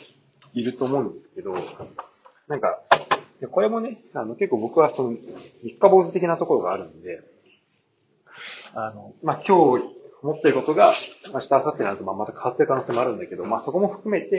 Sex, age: male, 30-49